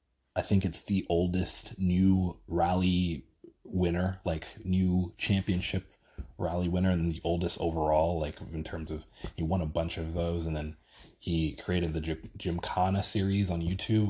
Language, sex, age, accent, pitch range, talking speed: English, male, 20-39, American, 80-95 Hz, 160 wpm